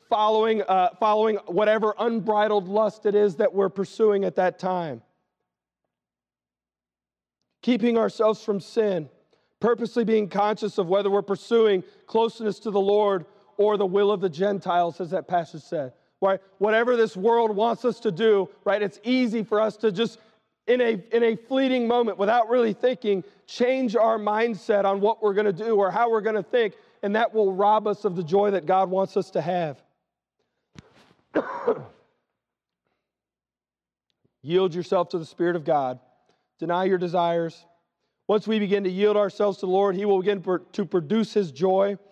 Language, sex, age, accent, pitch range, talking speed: English, male, 40-59, American, 185-220 Hz, 170 wpm